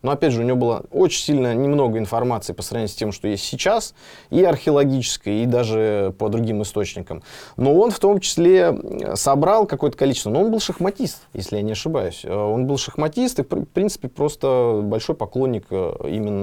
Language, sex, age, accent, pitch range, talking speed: Russian, male, 20-39, native, 100-140 Hz, 185 wpm